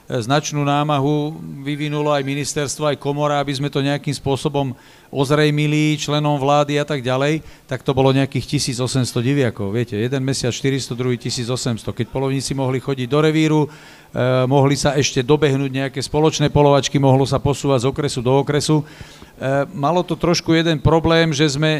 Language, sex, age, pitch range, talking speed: Slovak, male, 40-59, 135-150 Hz, 160 wpm